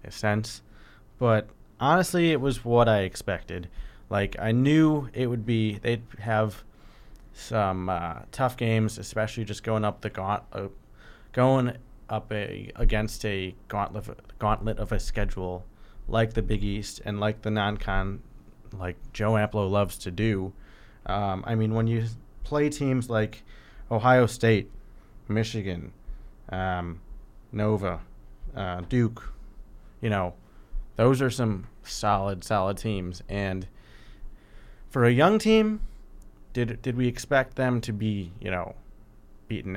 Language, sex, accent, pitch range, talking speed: English, male, American, 100-120 Hz, 135 wpm